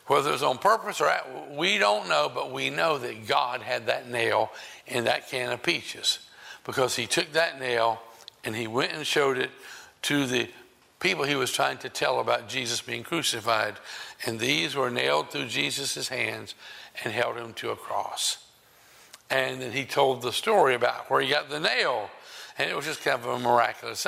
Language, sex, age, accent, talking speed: English, male, 60-79, American, 195 wpm